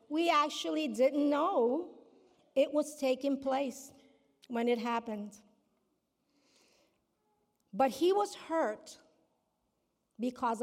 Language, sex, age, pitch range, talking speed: English, female, 50-69, 215-300 Hz, 90 wpm